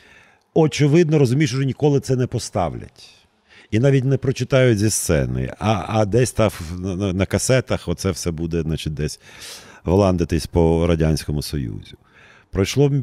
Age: 50-69